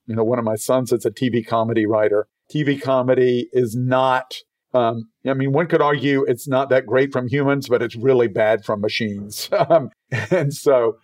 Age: 50-69